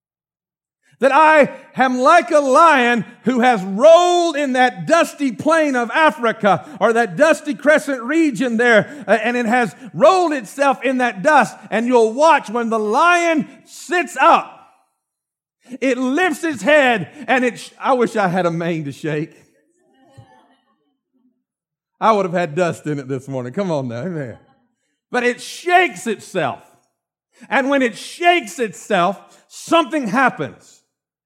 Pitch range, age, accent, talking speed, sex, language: 225-300 Hz, 50-69, American, 145 wpm, male, English